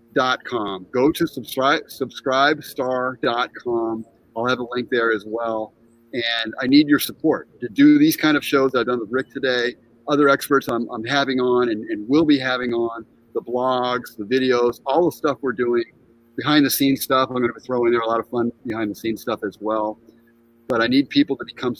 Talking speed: 200 wpm